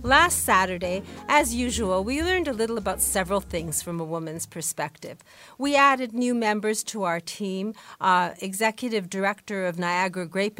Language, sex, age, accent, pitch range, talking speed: English, female, 50-69, American, 180-220 Hz, 160 wpm